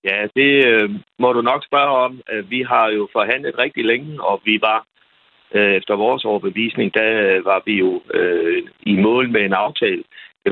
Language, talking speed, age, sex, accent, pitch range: Danish, 165 wpm, 60-79, male, native, 100-155 Hz